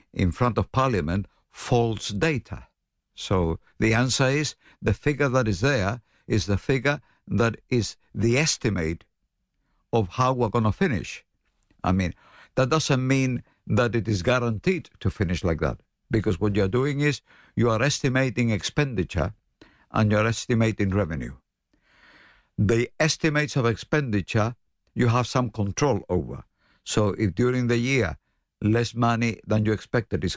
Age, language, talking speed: 60-79, English, 145 wpm